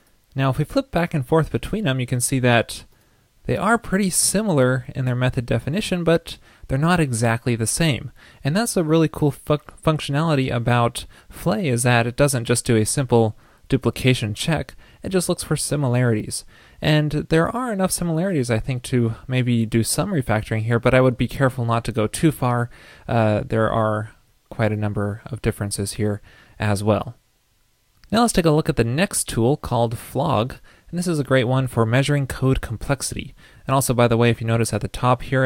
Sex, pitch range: male, 115-140 Hz